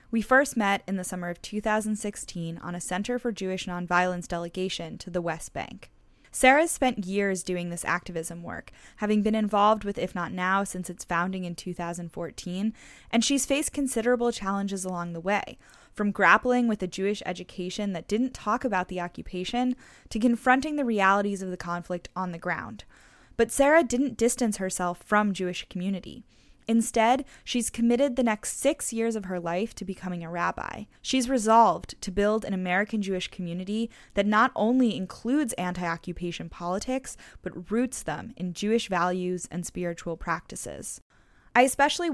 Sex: female